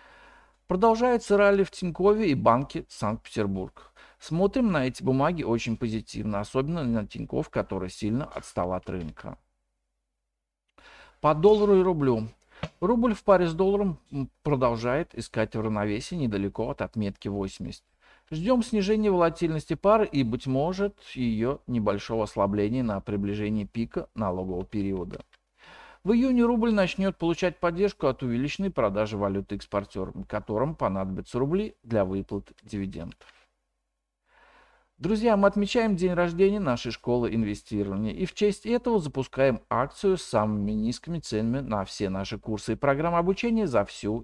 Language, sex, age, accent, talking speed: Russian, male, 50-69, native, 130 wpm